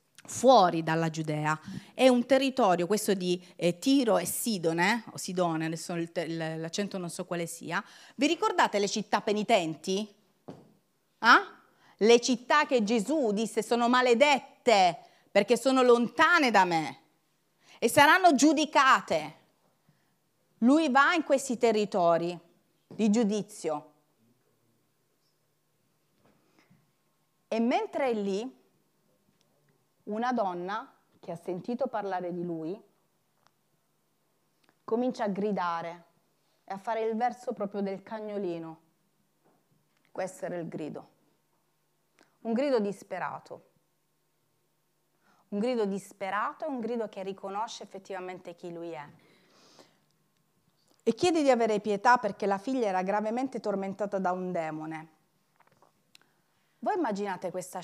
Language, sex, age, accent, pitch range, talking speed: Italian, female, 30-49, native, 175-240 Hz, 110 wpm